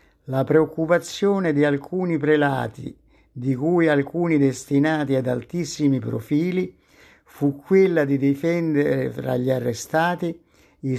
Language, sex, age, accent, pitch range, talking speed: Italian, male, 60-79, native, 135-160 Hz, 110 wpm